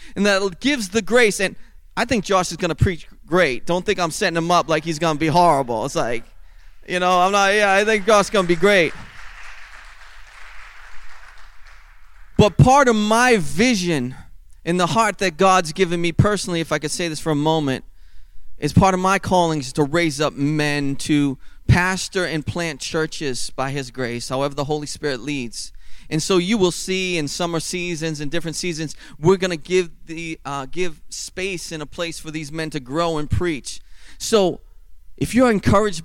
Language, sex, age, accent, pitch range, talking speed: English, male, 30-49, American, 145-190 Hz, 195 wpm